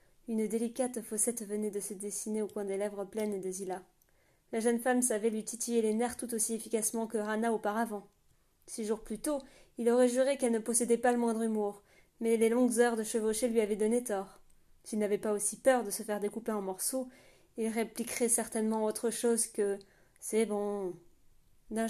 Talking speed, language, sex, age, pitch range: 205 wpm, French, female, 20-39, 210-235 Hz